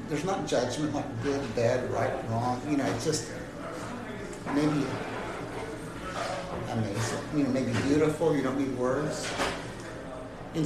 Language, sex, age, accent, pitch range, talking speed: English, male, 60-79, American, 125-155 Hz, 130 wpm